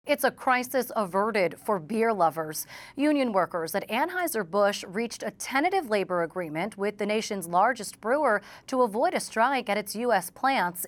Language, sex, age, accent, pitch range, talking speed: English, female, 40-59, American, 190-250 Hz, 160 wpm